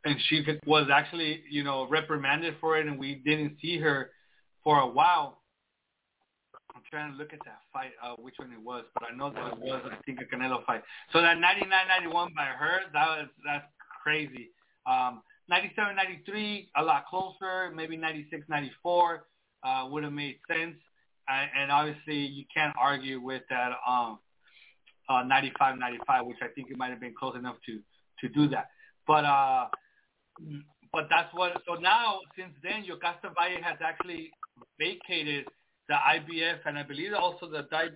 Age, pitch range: 30-49, 140-170 Hz